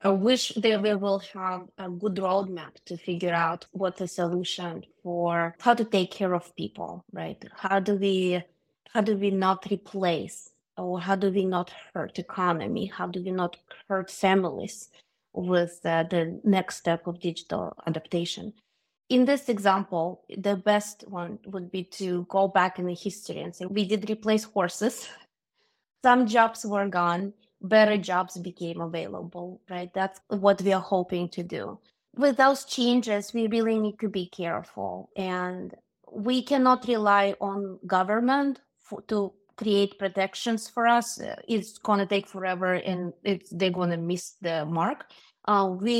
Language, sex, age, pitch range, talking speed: English, female, 20-39, 180-210 Hz, 160 wpm